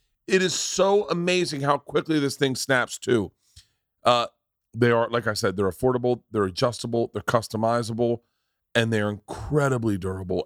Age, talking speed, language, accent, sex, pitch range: 40-59, 155 wpm, English, American, male, 115-145 Hz